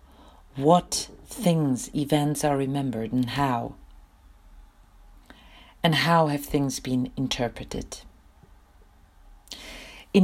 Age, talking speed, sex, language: 40-59, 80 wpm, female, Dutch